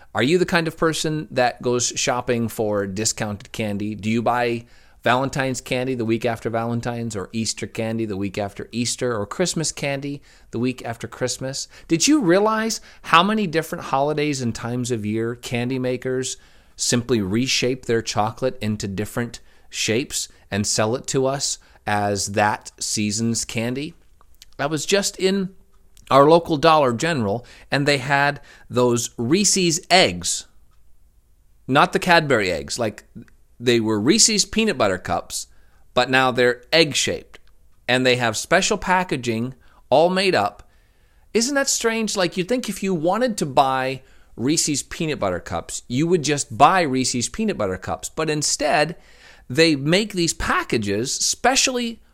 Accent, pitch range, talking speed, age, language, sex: American, 115-170 Hz, 150 wpm, 40-59, English, male